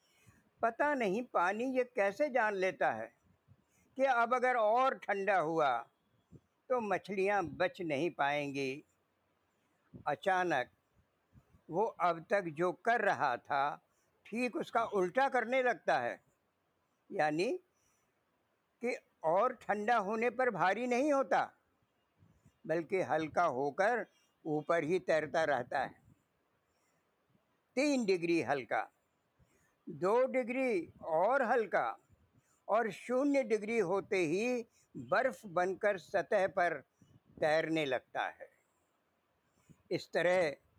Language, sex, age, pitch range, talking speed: Hindi, female, 60-79, 175-240 Hz, 105 wpm